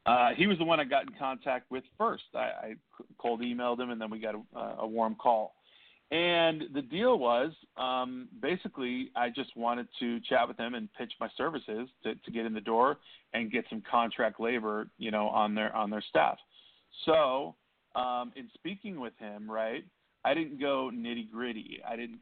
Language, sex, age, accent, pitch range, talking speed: English, male, 40-59, American, 110-130 Hz, 195 wpm